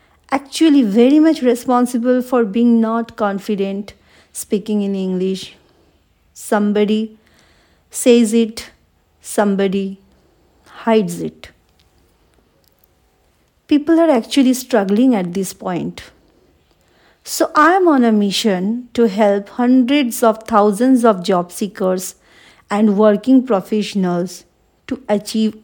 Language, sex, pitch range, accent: English, female, 190-235 Hz, Indian